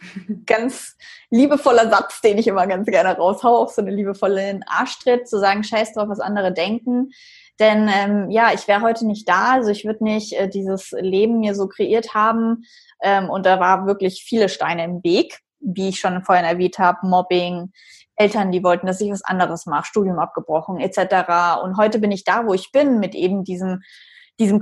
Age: 20-39